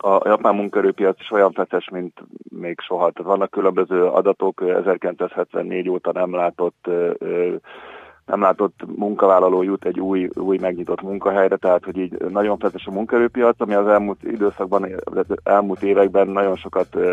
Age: 30-49